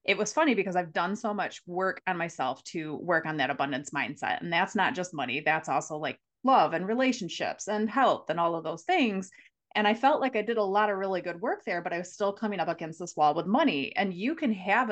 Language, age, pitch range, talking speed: English, 20-39, 165-210 Hz, 255 wpm